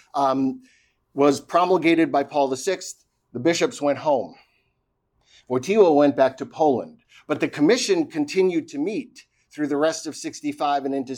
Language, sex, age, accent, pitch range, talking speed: English, male, 50-69, American, 130-165 Hz, 150 wpm